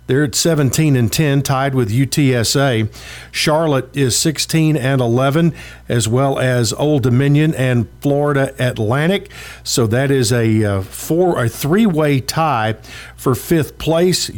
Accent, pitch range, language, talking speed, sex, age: American, 120-150 Hz, English, 135 wpm, male, 50-69